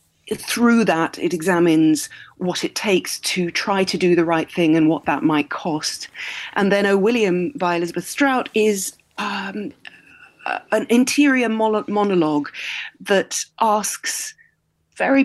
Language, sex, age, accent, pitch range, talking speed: English, female, 40-59, British, 170-215 Hz, 135 wpm